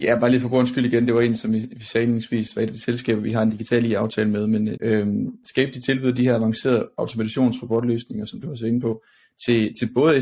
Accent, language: native, Danish